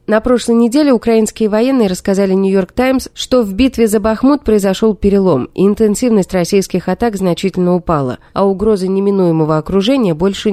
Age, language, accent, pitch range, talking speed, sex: 30-49, Russian, native, 175-240 Hz, 140 wpm, female